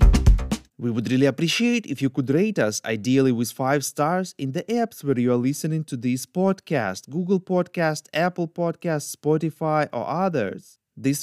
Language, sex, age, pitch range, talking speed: English, male, 30-49, 125-170 Hz, 165 wpm